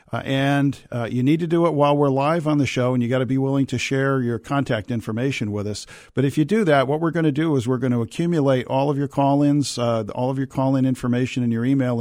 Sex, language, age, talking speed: male, English, 50-69, 260 wpm